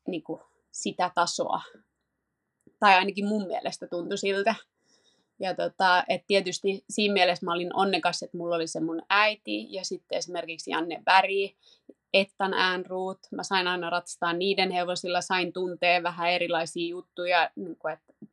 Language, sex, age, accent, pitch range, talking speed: Finnish, female, 20-39, native, 170-190 Hz, 145 wpm